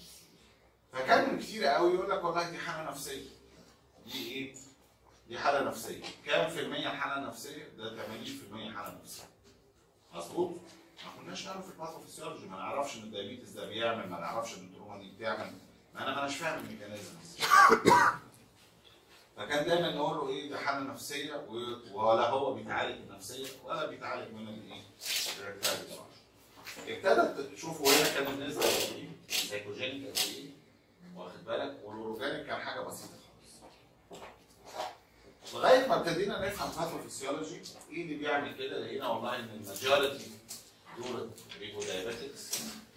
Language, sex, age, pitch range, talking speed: Arabic, male, 40-59, 110-145 Hz, 130 wpm